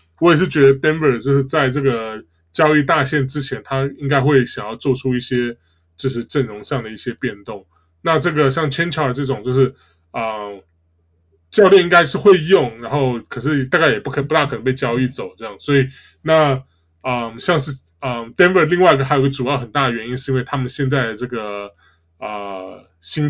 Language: Chinese